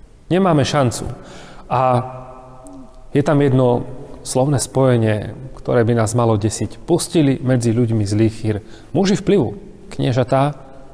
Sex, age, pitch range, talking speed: male, 40-59, 125-165 Hz, 115 wpm